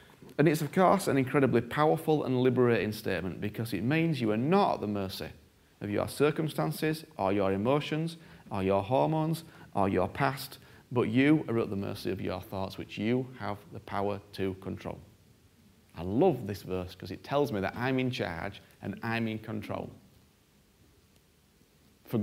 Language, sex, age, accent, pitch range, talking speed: English, male, 30-49, British, 100-125 Hz, 175 wpm